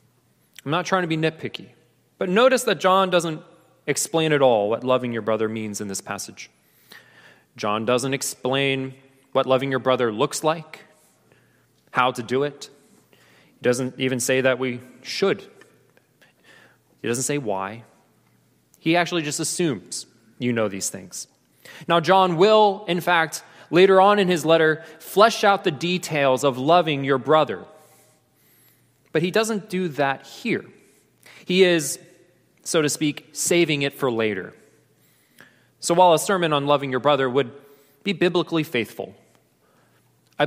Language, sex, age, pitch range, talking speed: English, male, 30-49, 130-170 Hz, 150 wpm